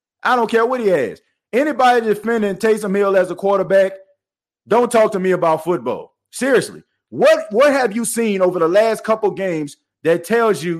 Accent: American